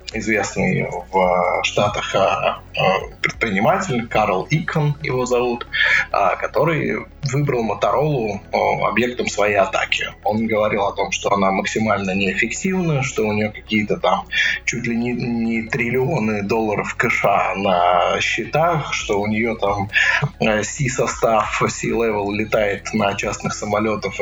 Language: Russian